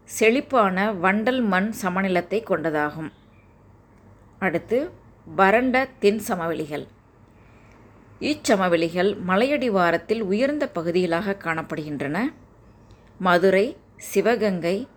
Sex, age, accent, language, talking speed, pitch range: female, 20-39, native, Tamil, 65 wpm, 150-220 Hz